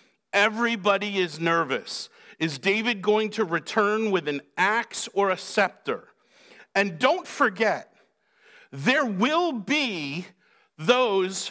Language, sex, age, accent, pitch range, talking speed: English, male, 50-69, American, 145-220 Hz, 110 wpm